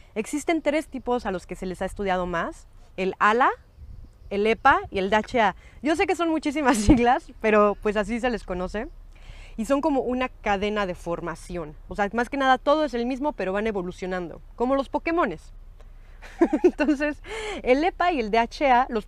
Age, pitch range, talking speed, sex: 30-49, 195-255 Hz, 185 wpm, female